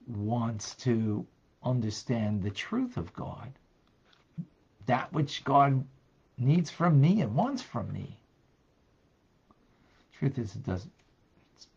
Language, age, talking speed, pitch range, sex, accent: English, 50-69, 110 wpm, 100-130 Hz, male, American